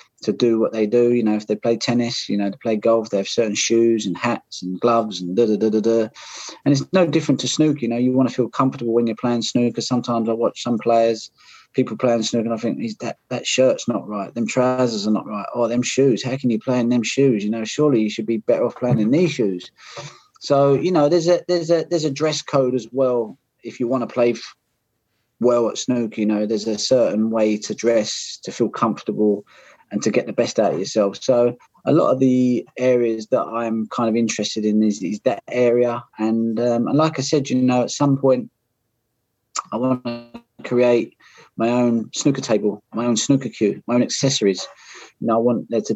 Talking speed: 235 wpm